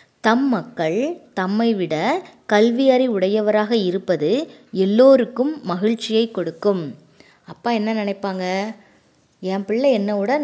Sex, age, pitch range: female, 20-39, 180-235 Hz